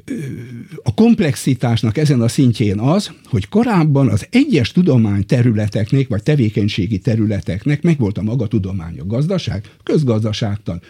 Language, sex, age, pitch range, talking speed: Hungarian, male, 60-79, 110-155 Hz, 110 wpm